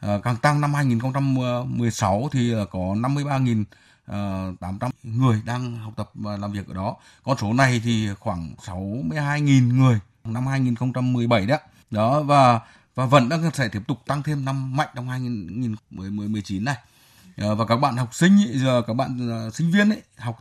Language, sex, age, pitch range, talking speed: Vietnamese, male, 20-39, 110-140 Hz, 155 wpm